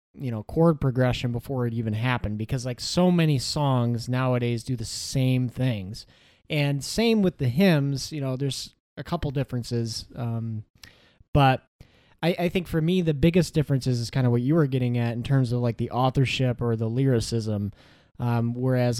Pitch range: 115-135 Hz